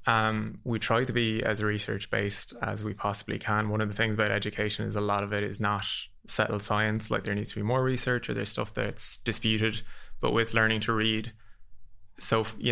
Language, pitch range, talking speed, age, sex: English, 105-115 Hz, 210 wpm, 20-39, male